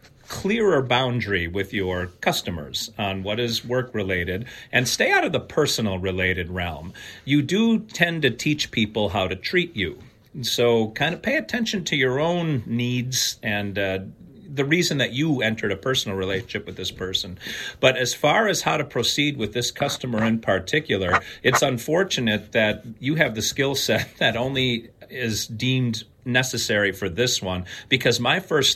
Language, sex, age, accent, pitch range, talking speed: English, male, 40-59, American, 105-145 Hz, 165 wpm